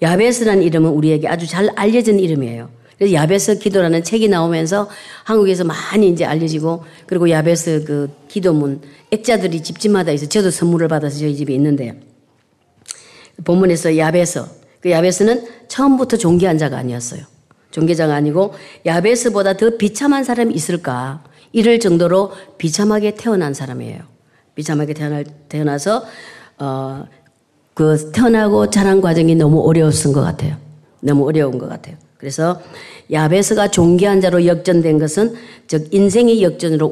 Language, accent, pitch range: Korean, native, 145-195 Hz